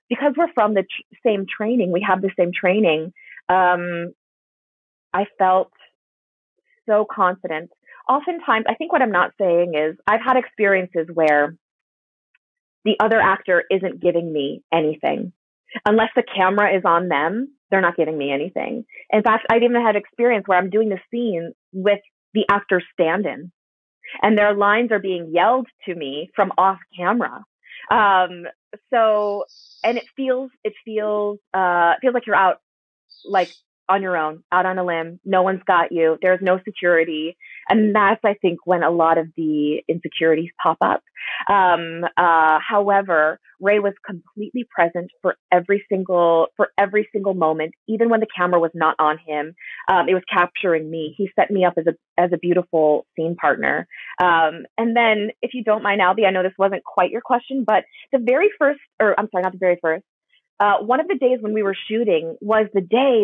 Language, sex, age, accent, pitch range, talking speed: English, female, 30-49, American, 170-215 Hz, 180 wpm